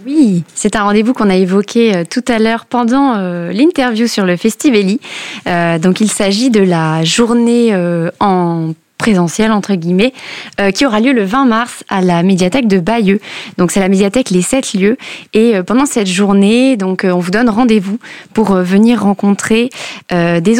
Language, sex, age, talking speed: French, female, 20-39, 190 wpm